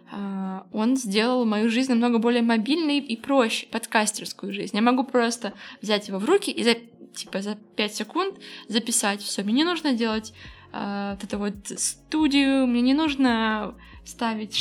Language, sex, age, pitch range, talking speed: Russian, female, 20-39, 220-270 Hz, 165 wpm